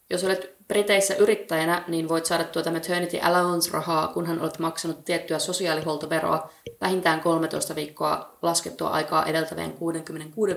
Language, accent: Finnish, native